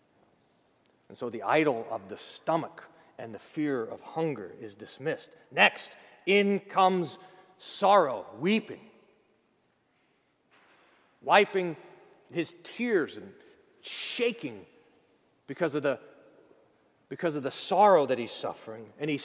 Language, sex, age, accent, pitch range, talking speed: English, male, 40-59, American, 140-190 Hz, 105 wpm